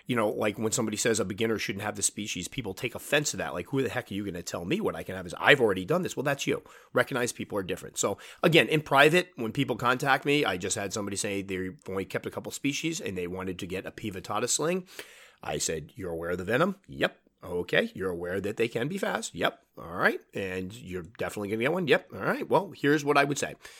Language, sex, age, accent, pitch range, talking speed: English, male, 30-49, American, 100-140 Hz, 265 wpm